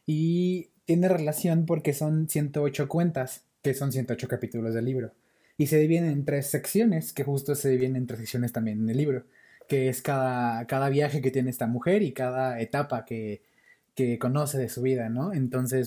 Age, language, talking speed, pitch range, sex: 20-39, Spanish, 190 wpm, 125-150 Hz, male